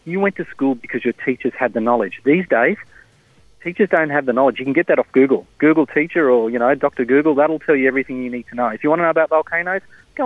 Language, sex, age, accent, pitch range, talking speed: English, male, 40-59, Australian, 125-150 Hz, 270 wpm